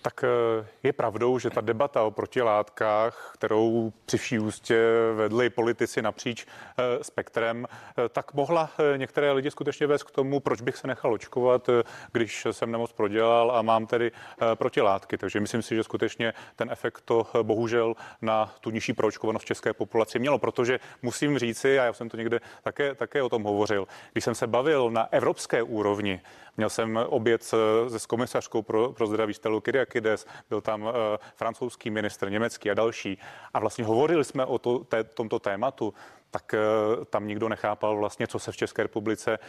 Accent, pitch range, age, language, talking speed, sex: native, 110-120 Hz, 30-49, Czech, 165 wpm, male